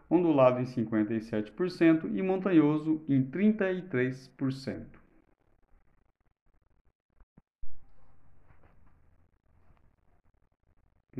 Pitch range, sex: 110-150 Hz, male